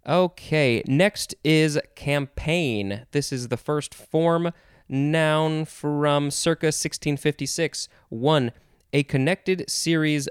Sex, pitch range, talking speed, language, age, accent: male, 125-160 Hz, 100 wpm, English, 20-39, American